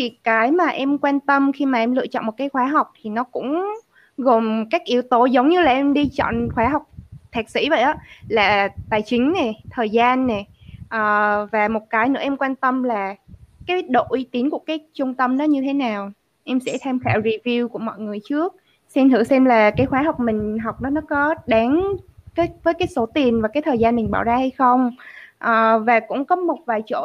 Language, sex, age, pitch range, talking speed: Vietnamese, female, 20-39, 225-290 Hz, 230 wpm